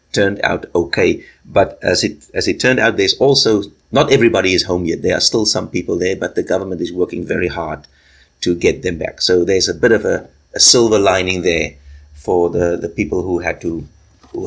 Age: 50-69